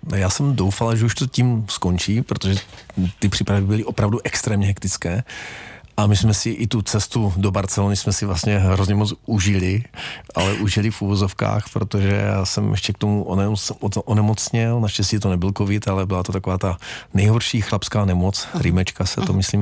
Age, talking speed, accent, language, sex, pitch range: 40-59, 175 wpm, native, Czech, male, 95-105 Hz